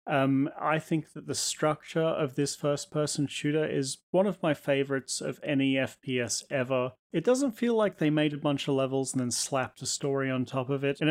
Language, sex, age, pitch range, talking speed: English, male, 30-49, 130-155 Hz, 215 wpm